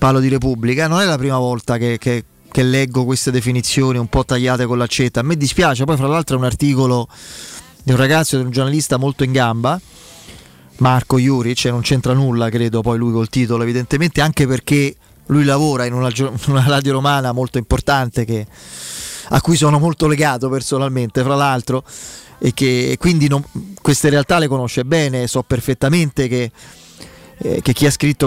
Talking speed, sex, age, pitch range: 185 wpm, male, 30-49, 130-155 Hz